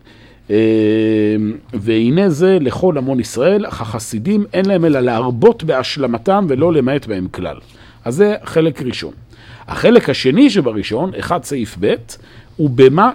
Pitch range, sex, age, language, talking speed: 115-170 Hz, male, 50-69, Hebrew, 130 wpm